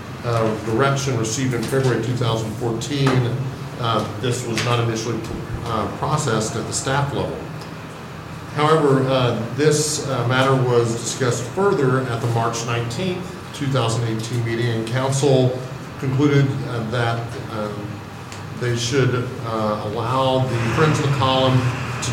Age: 50-69